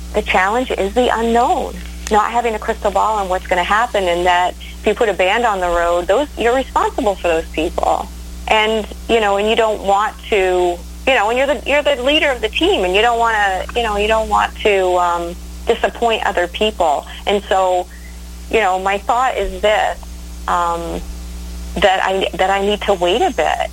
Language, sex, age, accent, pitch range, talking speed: English, female, 30-49, American, 170-200 Hz, 210 wpm